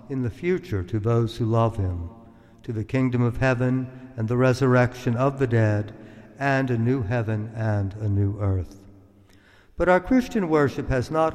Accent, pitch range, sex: American, 110-135 Hz, male